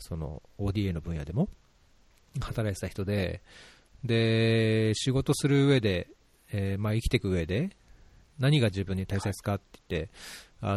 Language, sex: Japanese, male